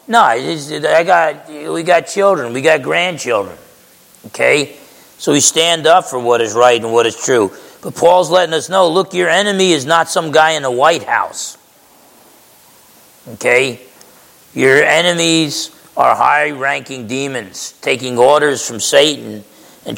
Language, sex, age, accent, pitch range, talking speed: English, male, 40-59, American, 130-175 Hz, 140 wpm